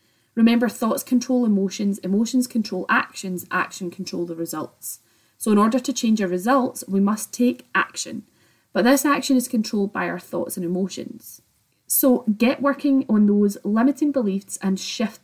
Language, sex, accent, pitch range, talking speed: English, female, British, 180-230 Hz, 160 wpm